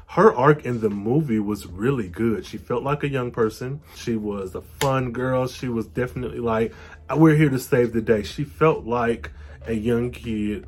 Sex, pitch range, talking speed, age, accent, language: male, 95-125 Hz, 195 wpm, 20-39, American, English